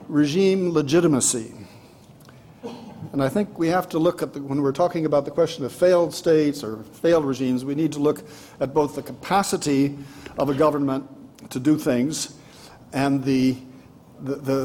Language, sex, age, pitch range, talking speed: English, male, 60-79, 130-180 Hz, 170 wpm